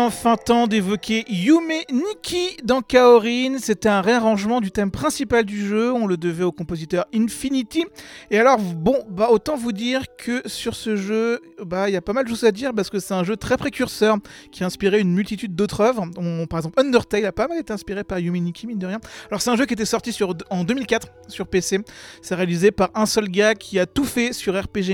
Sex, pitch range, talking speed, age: male, 185-235 Hz, 225 wpm, 40-59